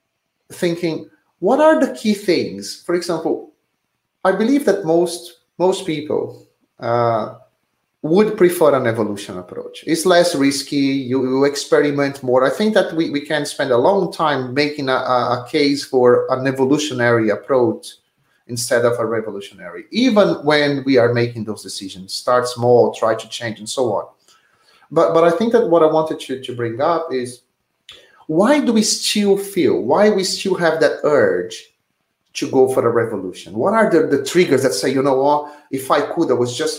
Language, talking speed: English, 180 wpm